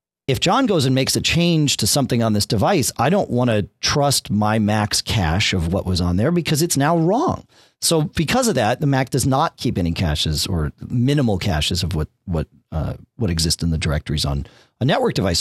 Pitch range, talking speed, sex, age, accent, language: 95-145 Hz, 220 wpm, male, 40-59, American, English